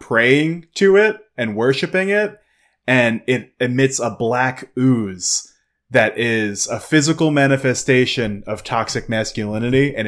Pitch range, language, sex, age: 115-140 Hz, English, male, 20-39